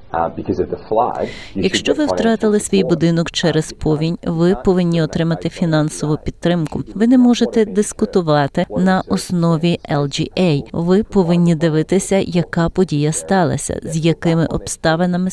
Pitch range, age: 155-195 Hz, 40-59